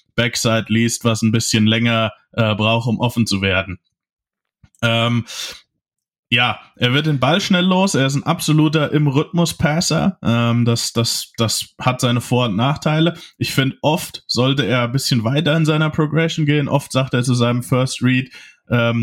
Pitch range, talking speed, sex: 120-135 Hz, 170 wpm, male